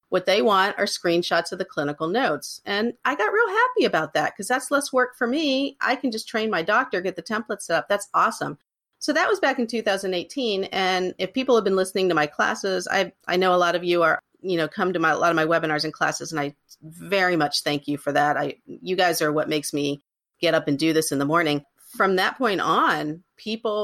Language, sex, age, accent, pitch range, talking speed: English, female, 40-59, American, 155-215 Hz, 245 wpm